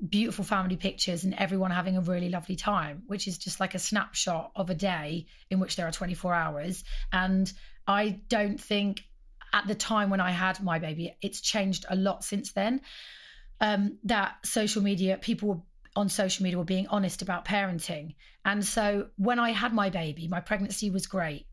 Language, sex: English, female